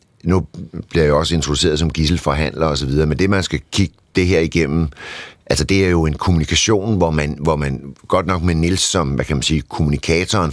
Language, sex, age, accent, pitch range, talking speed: Danish, male, 60-79, native, 75-95 Hz, 220 wpm